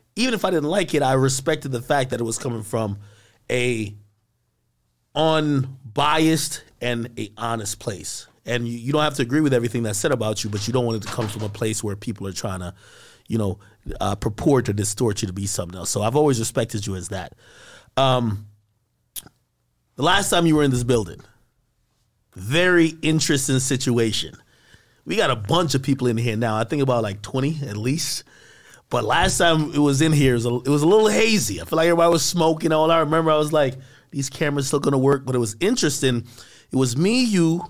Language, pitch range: English, 110-150 Hz